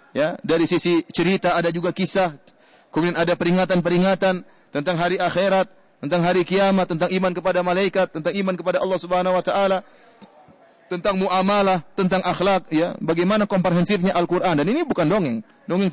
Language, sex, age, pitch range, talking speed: English, male, 30-49, 175-235 Hz, 150 wpm